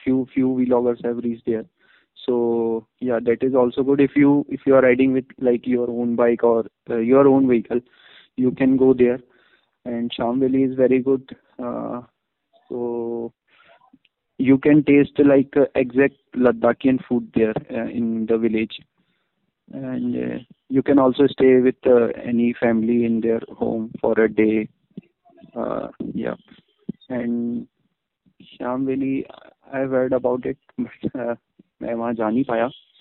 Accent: Indian